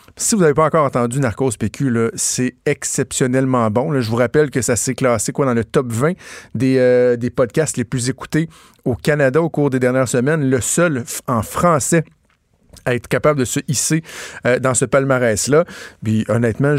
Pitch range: 120-150 Hz